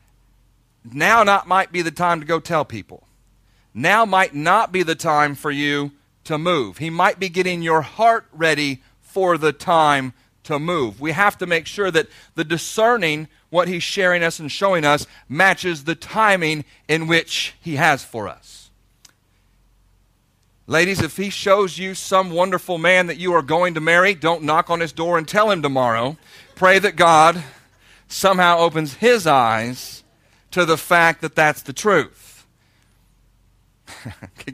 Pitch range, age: 120-180 Hz, 40-59